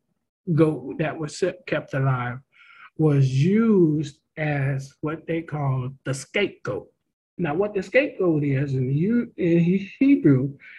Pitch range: 135-185 Hz